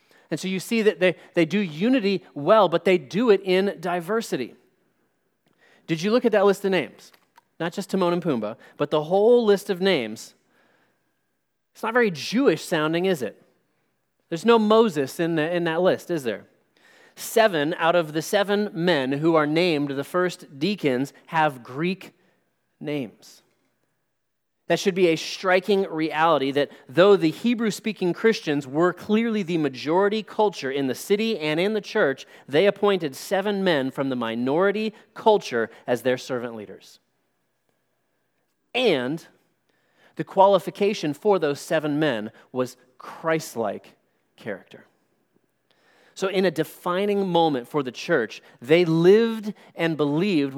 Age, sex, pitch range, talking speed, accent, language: 30-49, male, 145-200 Hz, 150 wpm, American, English